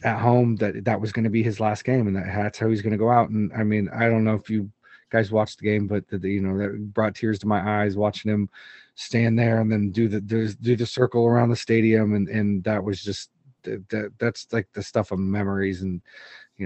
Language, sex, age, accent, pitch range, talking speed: English, male, 30-49, American, 105-120 Hz, 260 wpm